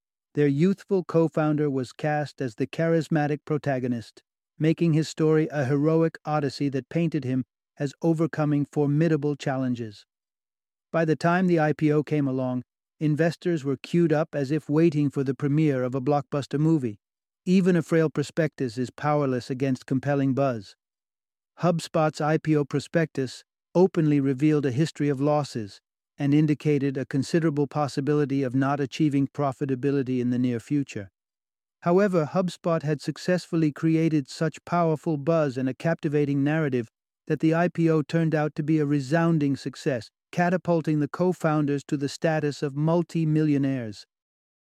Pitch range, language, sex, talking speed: 135-160 Hz, English, male, 140 wpm